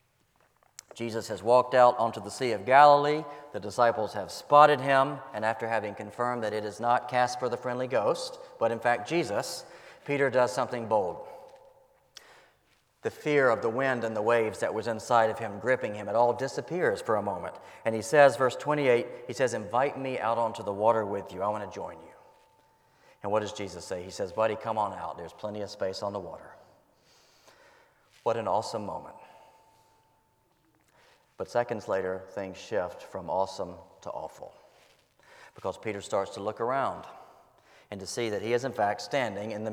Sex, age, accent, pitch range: male, 40-59, American, 105-130 Hz